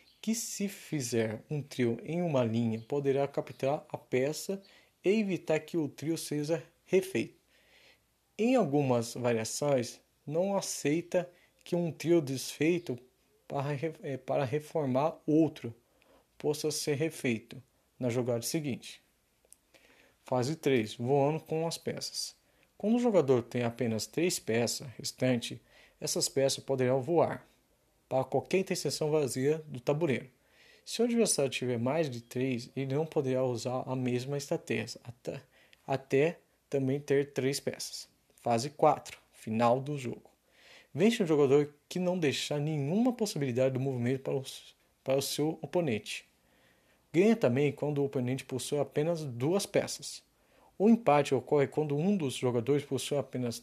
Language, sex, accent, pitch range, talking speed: Portuguese, male, Brazilian, 130-160 Hz, 135 wpm